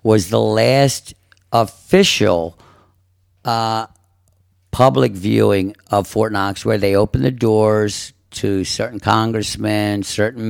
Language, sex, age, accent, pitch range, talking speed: English, male, 50-69, American, 95-110 Hz, 110 wpm